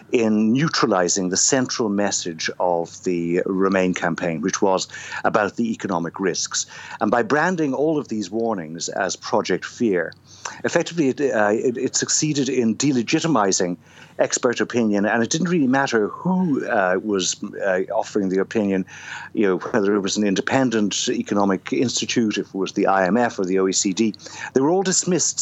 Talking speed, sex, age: 160 wpm, male, 60-79